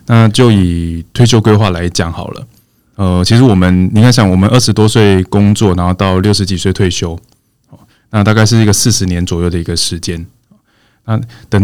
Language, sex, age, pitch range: Chinese, male, 20-39, 95-115 Hz